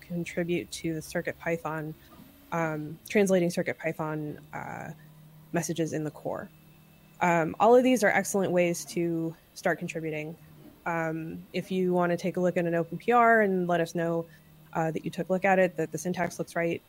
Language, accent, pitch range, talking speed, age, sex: English, American, 165-190 Hz, 180 wpm, 20-39, female